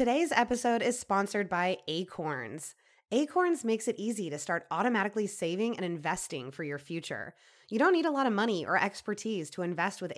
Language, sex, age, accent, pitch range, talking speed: English, female, 20-39, American, 175-230 Hz, 185 wpm